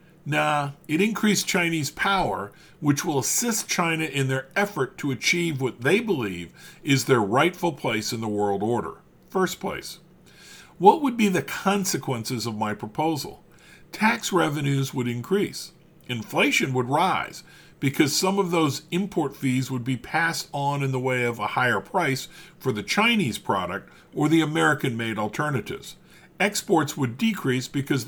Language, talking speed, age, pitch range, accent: English, 150 wpm, 50-69, 130-180 Hz, American